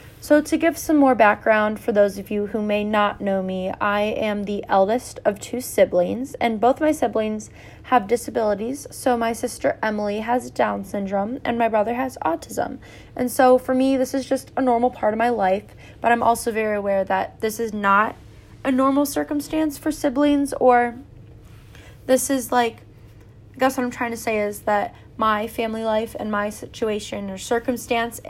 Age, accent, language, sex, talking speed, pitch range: 20-39, American, English, female, 190 wpm, 200-250 Hz